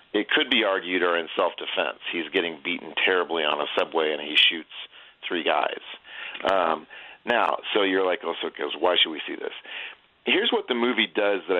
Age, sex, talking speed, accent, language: 40-59, male, 200 wpm, American, English